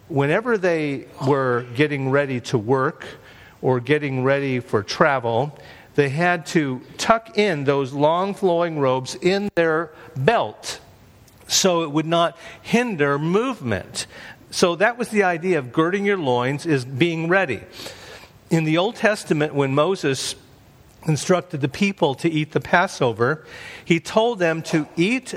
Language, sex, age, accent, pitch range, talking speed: English, male, 50-69, American, 135-180 Hz, 140 wpm